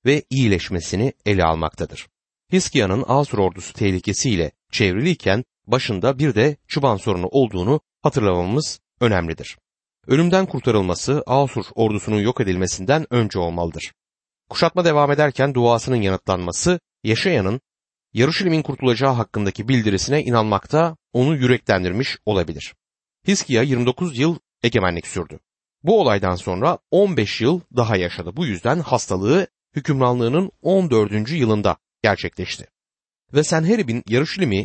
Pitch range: 100-150 Hz